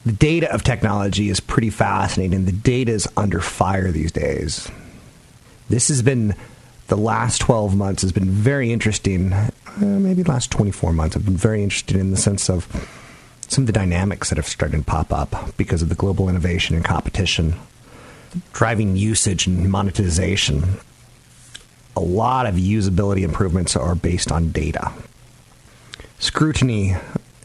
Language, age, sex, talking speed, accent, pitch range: English, 40-59, male, 150 wpm, American, 95-120 Hz